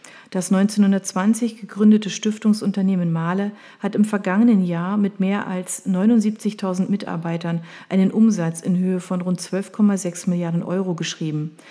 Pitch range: 180-215 Hz